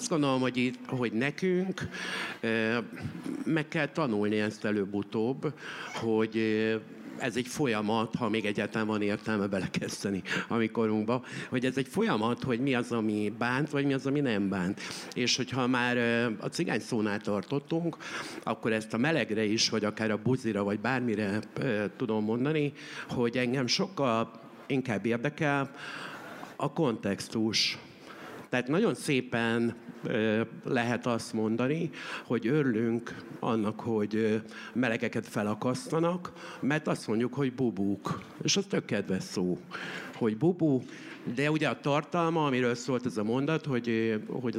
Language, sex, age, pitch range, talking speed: Hungarian, male, 60-79, 110-140 Hz, 140 wpm